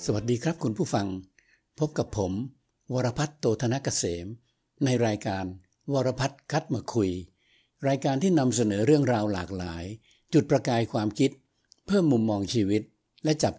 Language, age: Thai, 60-79